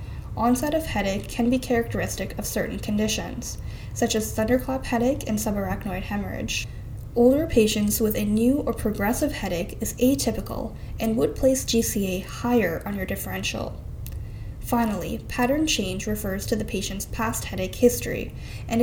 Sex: female